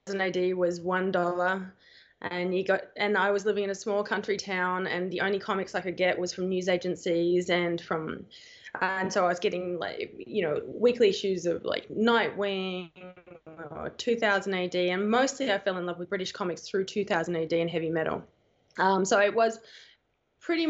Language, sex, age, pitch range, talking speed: English, female, 20-39, 185-215 Hz, 195 wpm